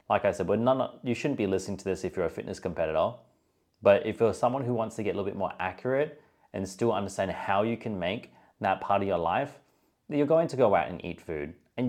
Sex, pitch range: male, 95-125 Hz